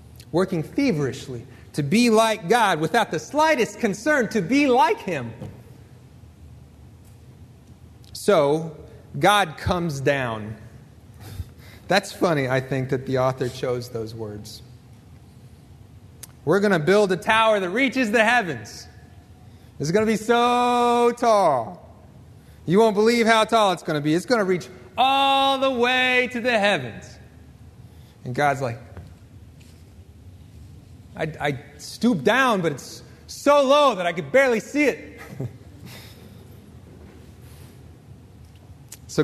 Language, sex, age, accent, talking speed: English, male, 30-49, American, 125 wpm